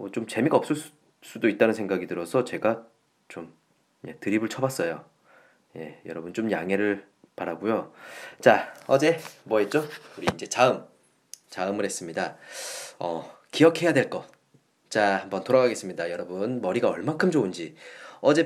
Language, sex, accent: Korean, male, native